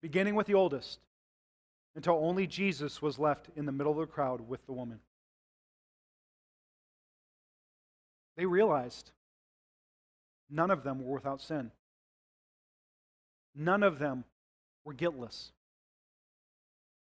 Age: 40-59